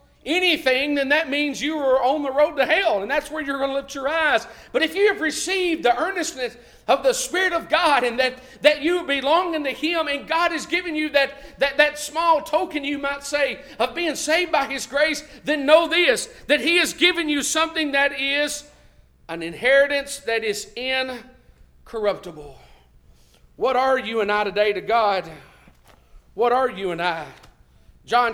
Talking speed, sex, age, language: 185 wpm, male, 50-69, English